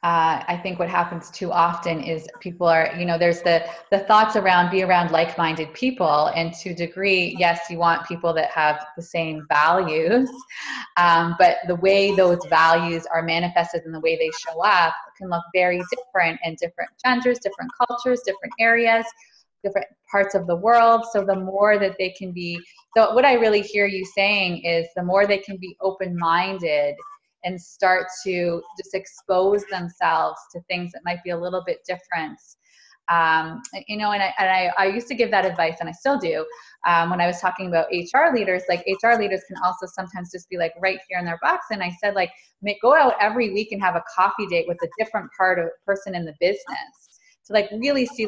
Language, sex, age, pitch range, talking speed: English, female, 20-39, 170-205 Hz, 210 wpm